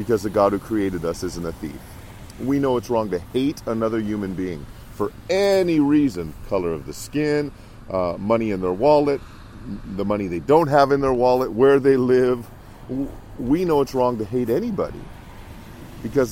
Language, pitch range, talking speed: English, 95-120 Hz, 180 wpm